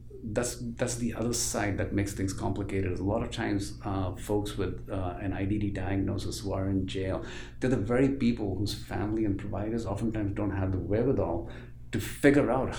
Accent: Indian